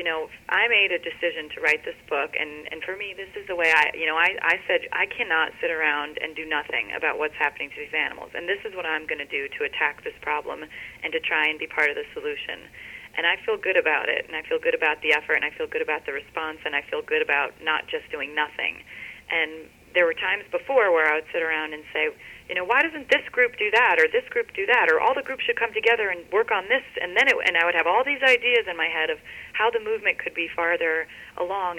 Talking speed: 270 wpm